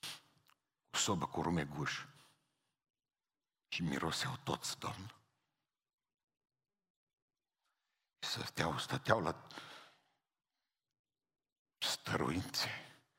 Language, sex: Romanian, male